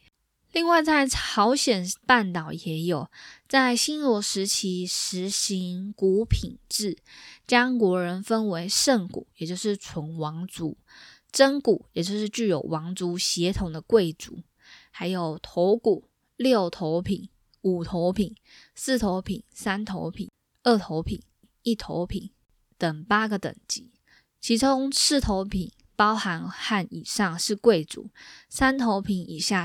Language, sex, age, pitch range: Chinese, female, 10-29, 175-230 Hz